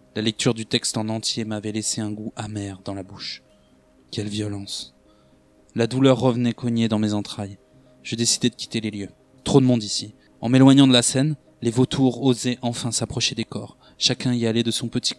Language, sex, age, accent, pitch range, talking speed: French, male, 20-39, French, 115-135 Hz, 200 wpm